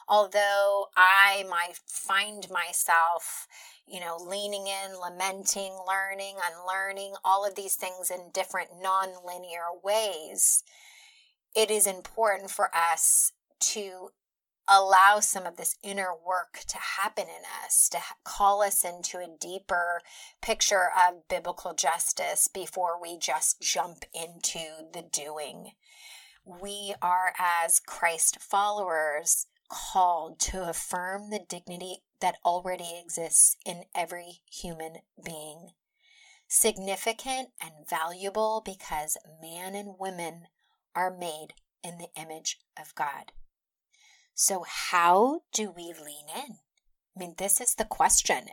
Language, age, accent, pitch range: English, 30-49, American, 175-205 Hz